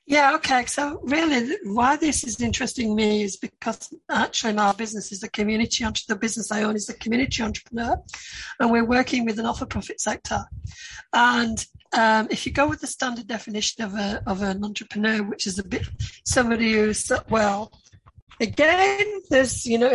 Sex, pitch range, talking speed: female, 215-270 Hz, 175 wpm